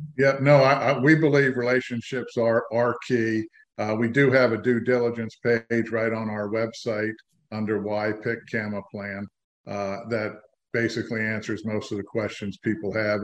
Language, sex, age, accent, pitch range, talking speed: English, male, 50-69, American, 105-125 Hz, 170 wpm